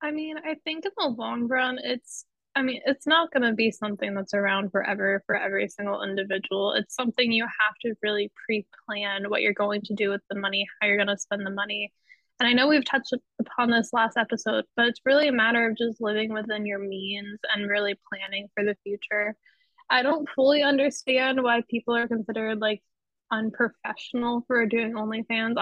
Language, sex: English, female